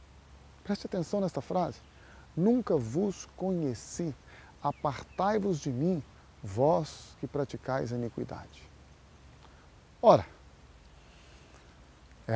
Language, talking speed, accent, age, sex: Portuguese, 85 wpm, Brazilian, 40-59, male